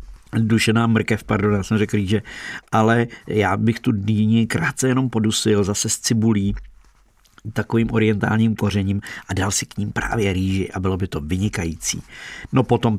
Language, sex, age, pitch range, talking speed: Czech, male, 50-69, 95-115 Hz, 160 wpm